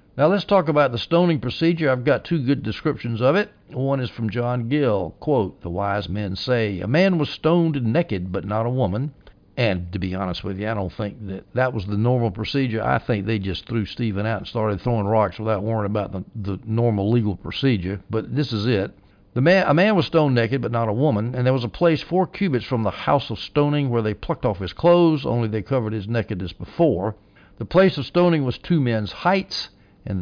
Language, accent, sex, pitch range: English, American, male, 105-140 Hz